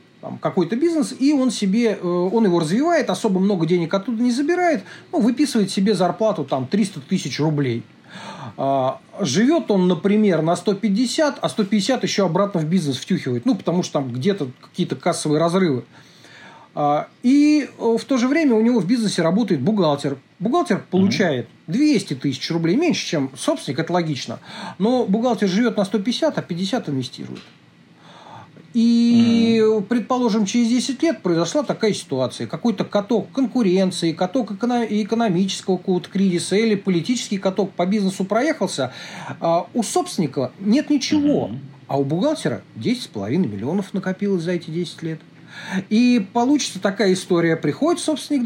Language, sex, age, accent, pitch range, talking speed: Russian, male, 40-59, native, 170-235 Hz, 135 wpm